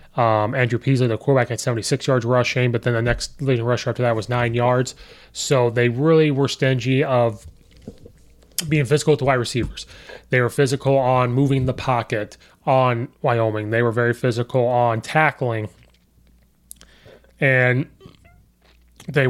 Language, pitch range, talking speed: English, 115-135 Hz, 150 wpm